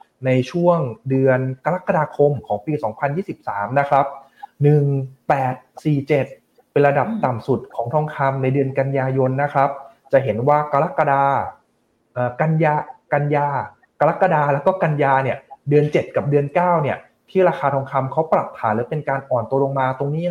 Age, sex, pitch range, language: 20-39, male, 130-155 Hz, Thai